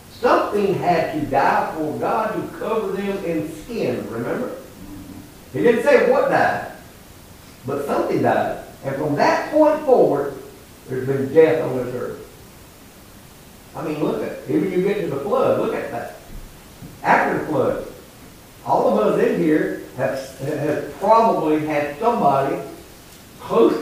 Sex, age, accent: male, 60-79, American